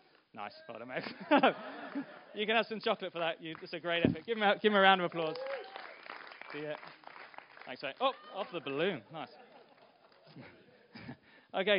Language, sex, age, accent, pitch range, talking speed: English, male, 20-39, British, 130-175 Hz, 165 wpm